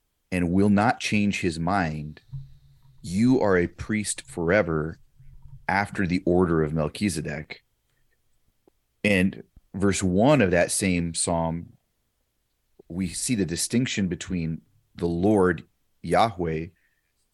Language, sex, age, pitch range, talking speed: English, male, 30-49, 85-105 Hz, 105 wpm